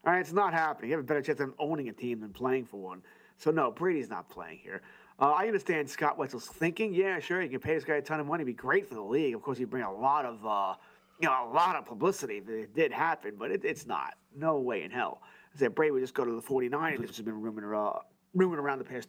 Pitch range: 130-205 Hz